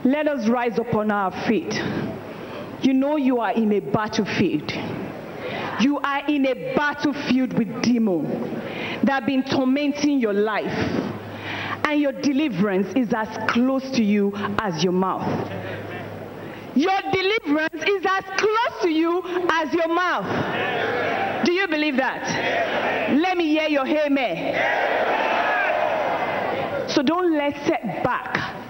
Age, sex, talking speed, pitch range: 40-59, female, 130 wpm, 245-350 Hz